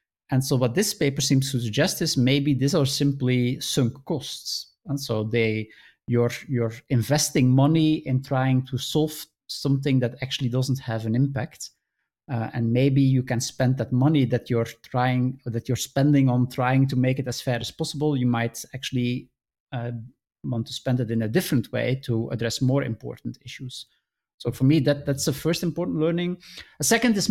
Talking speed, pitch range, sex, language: 185 wpm, 125-150 Hz, male, English